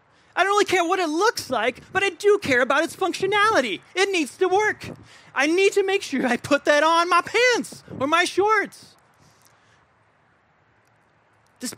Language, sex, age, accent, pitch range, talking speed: English, male, 30-49, American, 225-310 Hz, 175 wpm